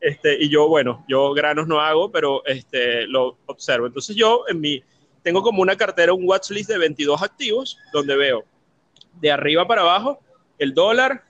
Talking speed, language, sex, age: 180 wpm, Spanish, male, 30-49